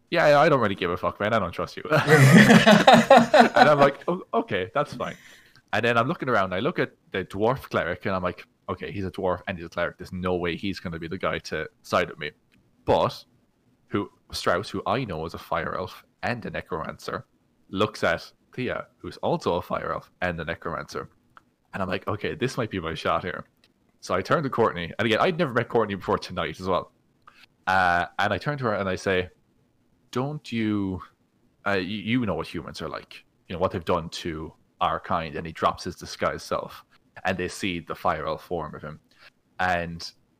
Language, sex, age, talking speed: English, male, 20-39, 215 wpm